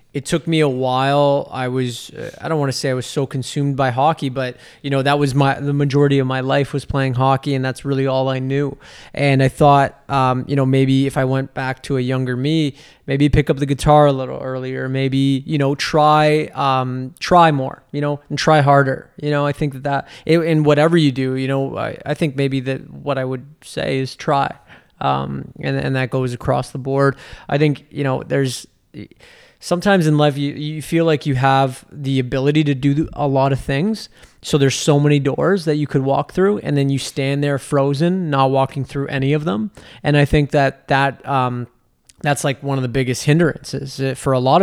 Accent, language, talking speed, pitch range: American, English, 220 wpm, 130-145 Hz